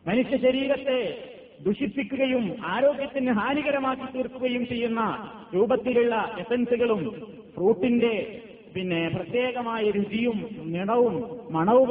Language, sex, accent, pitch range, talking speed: Malayalam, male, native, 185-245 Hz, 70 wpm